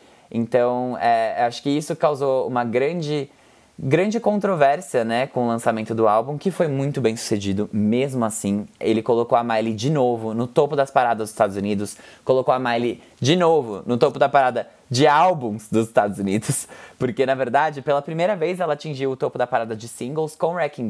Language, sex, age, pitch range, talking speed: Portuguese, male, 20-39, 110-145 Hz, 185 wpm